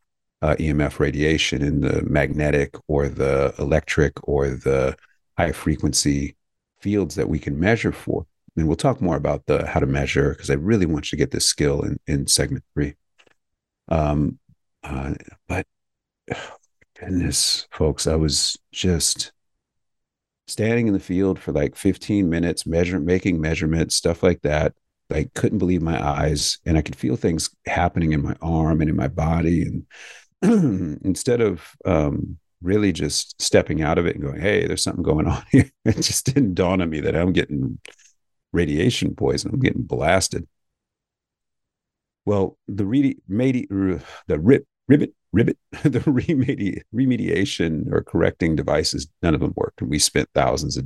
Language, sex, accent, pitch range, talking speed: English, male, American, 75-95 Hz, 165 wpm